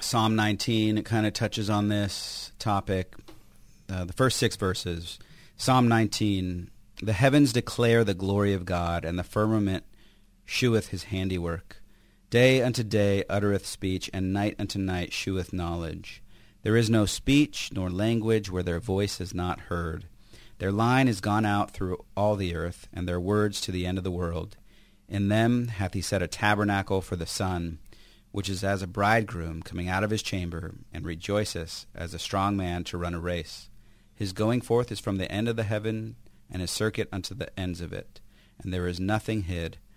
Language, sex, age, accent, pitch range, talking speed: English, male, 40-59, American, 90-110 Hz, 185 wpm